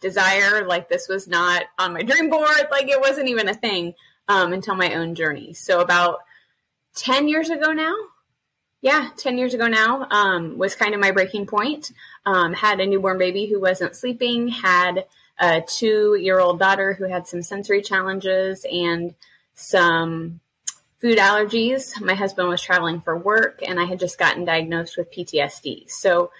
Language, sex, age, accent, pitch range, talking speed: English, female, 20-39, American, 175-240 Hz, 170 wpm